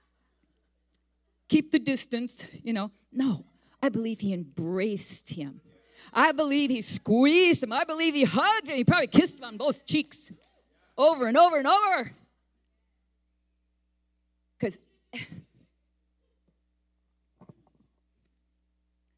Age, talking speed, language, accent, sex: 40-59, 105 wpm, English, American, female